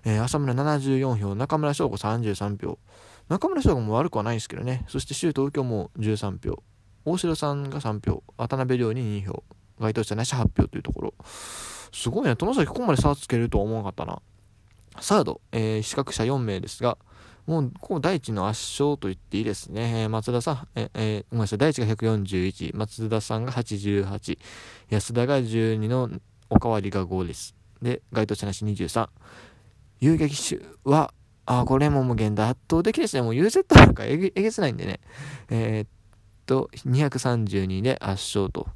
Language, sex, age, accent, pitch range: Japanese, male, 20-39, native, 100-130 Hz